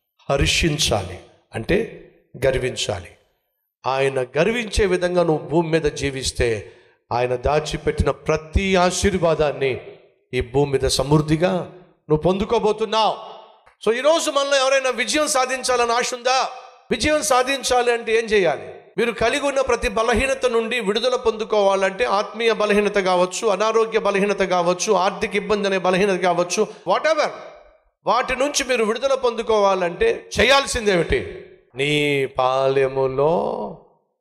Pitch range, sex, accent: 150-245 Hz, male, native